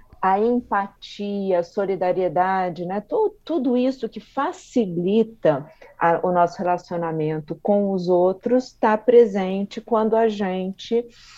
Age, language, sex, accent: 40-59, Portuguese, female, Brazilian